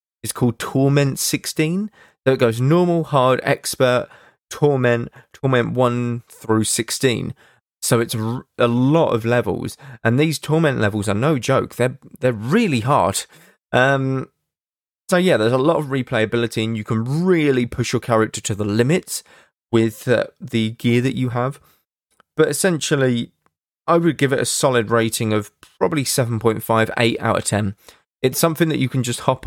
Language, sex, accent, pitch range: English, male, British, 110-135 Hz